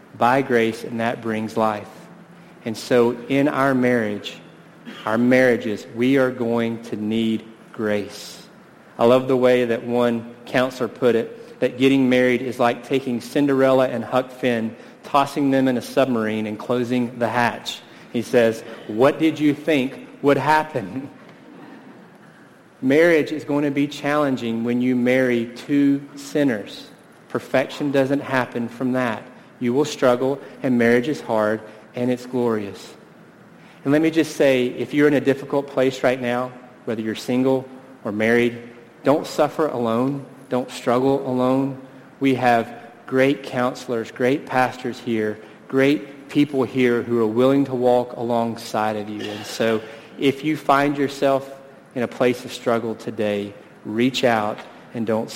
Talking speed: 150 wpm